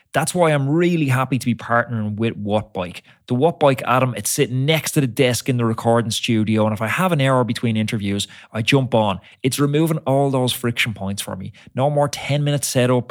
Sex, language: male, English